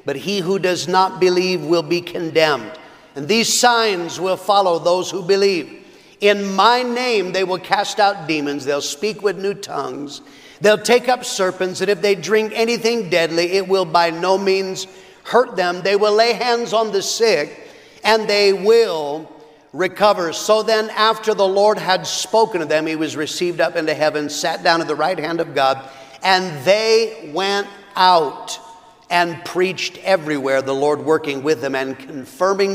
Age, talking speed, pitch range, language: 50-69, 175 wpm, 165-220 Hz, English